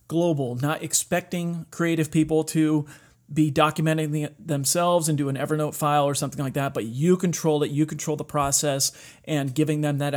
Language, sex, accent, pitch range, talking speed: English, male, American, 145-170 Hz, 175 wpm